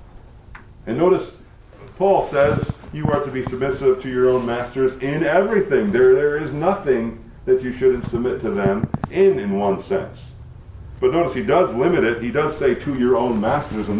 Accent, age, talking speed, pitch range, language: American, 50-69, 185 wpm, 115-170 Hz, English